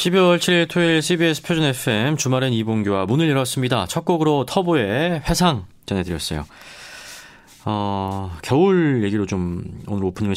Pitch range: 95-140 Hz